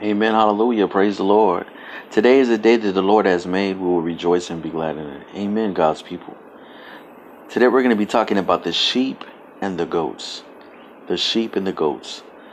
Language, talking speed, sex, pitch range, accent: English, 200 wpm, male, 95-120 Hz, American